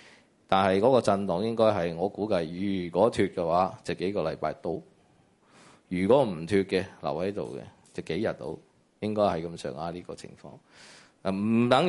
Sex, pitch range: male, 90-110 Hz